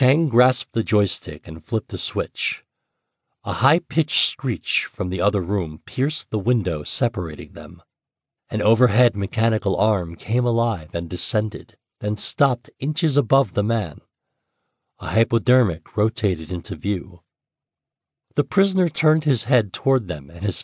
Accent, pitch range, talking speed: American, 95-130 Hz, 140 wpm